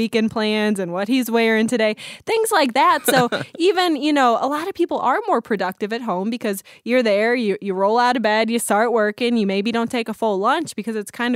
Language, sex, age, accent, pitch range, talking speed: English, female, 20-39, American, 195-245 Hz, 240 wpm